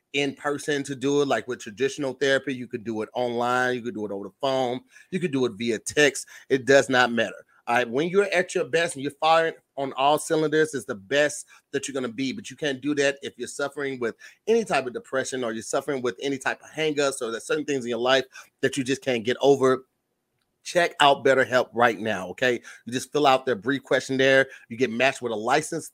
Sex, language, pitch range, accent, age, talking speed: male, English, 125-145 Hz, American, 30-49, 245 wpm